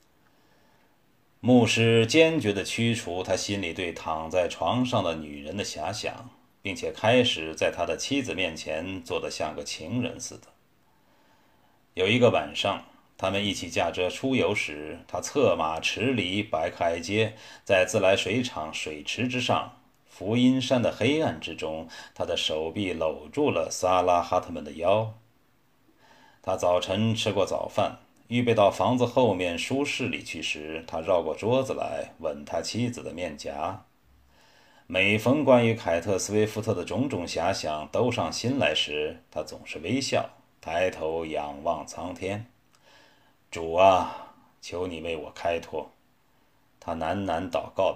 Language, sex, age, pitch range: Chinese, male, 30-49, 85-120 Hz